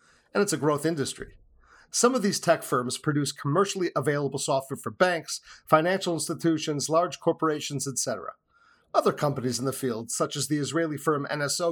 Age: 40-59